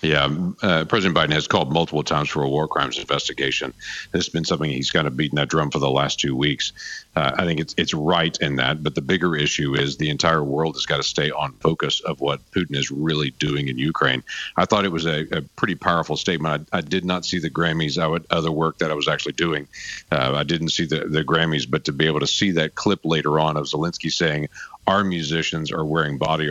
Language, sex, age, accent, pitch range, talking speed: English, male, 50-69, American, 70-80 Hz, 245 wpm